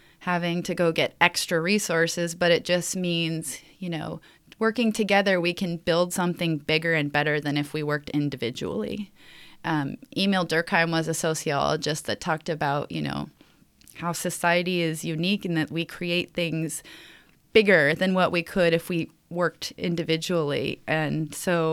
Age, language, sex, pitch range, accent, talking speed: 30-49, English, female, 155-185 Hz, American, 155 wpm